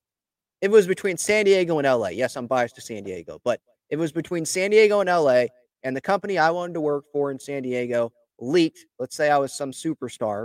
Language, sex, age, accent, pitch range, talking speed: English, male, 30-49, American, 130-190 Hz, 225 wpm